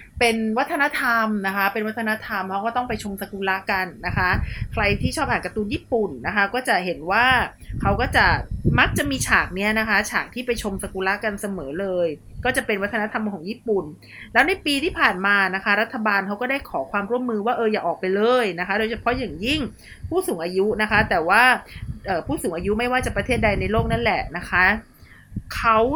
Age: 30-49